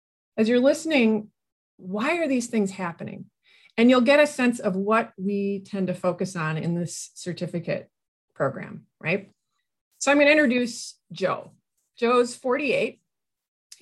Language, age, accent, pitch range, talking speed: English, 30-49, American, 175-225 Hz, 140 wpm